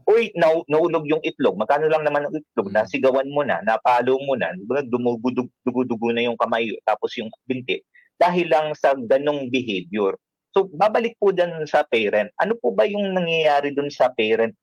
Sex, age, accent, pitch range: male, 40-59, native, 125-175 Hz